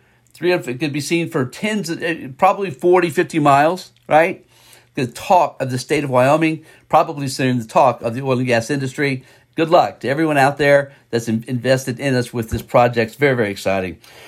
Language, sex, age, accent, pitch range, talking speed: English, male, 50-69, American, 125-165 Hz, 195 wpm